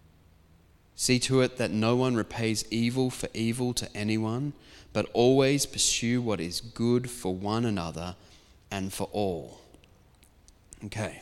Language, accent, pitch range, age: English, Australian, 105-125 Hz, 20-39